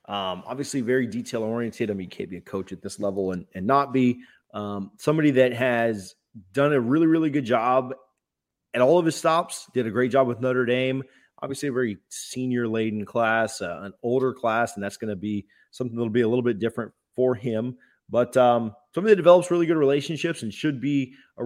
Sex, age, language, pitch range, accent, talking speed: male, 30-49, English, 115-145 Hz, American, 215 wpm